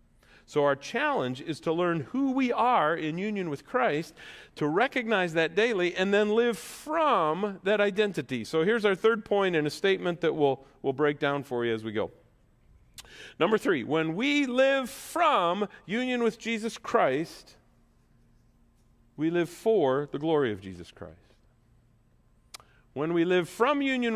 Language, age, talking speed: English, 50-69, 160 wpm